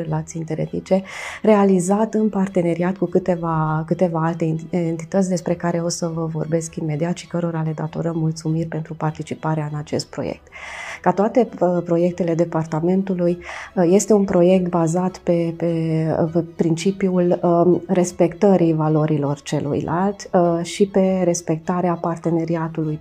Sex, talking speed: female, 115 wpm